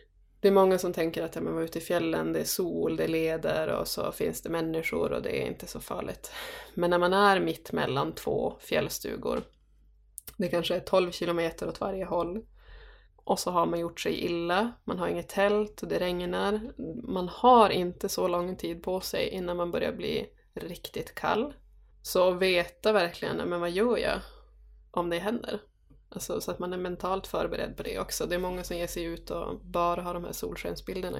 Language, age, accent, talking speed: Swedish, 20-39, native, 200 wpm